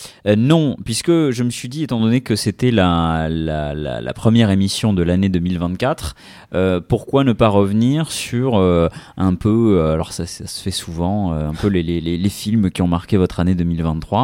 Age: 30-49